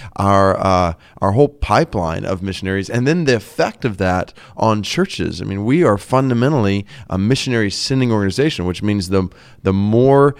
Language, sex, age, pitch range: English, male, 30-49, 95-130 Hz